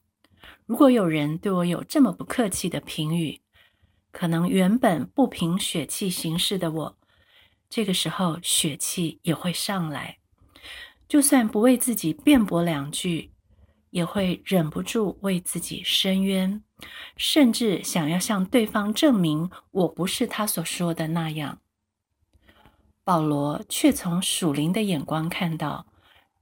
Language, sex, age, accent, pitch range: Chinese, female, 50-69, native, 160-215 Hz